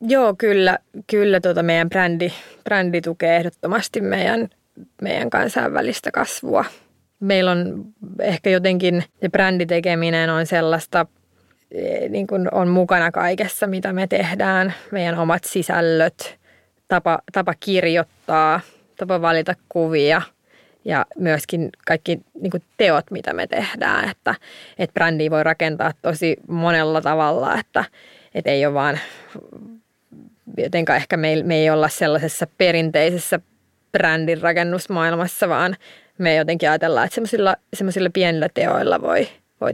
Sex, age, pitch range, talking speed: female, 20-39, 160-185 Hz, 120 wpm